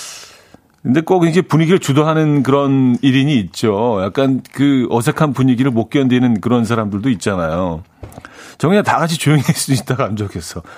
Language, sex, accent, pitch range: Korean, male, native, 105-150 Hz